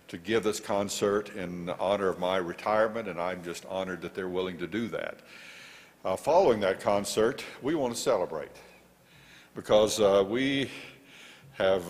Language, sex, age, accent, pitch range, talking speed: English, male, 60-79, American, 90-115 Hz, 155 wpm